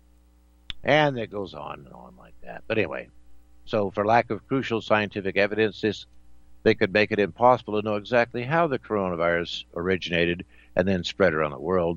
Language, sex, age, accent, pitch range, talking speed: English, male, 60-79, American, 75-115 Hz, 180 wpm